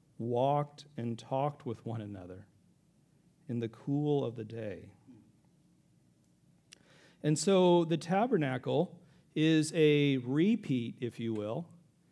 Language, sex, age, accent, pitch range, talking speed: English, male, 40-59, American, 125-165 Hz, 110 wpm